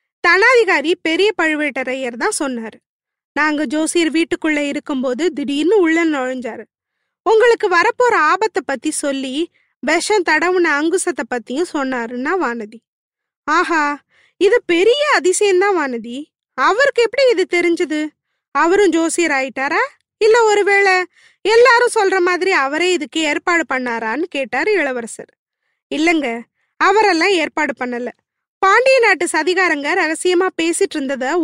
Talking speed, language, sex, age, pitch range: 105 wpm, Tamil, female, 20-39, 285-380 Hz